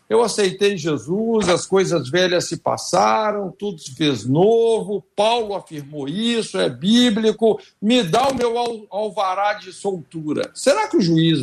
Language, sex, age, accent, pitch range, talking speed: Portuguese, male, 60-79, Brazilian, 155-215 Hz, 150 wpm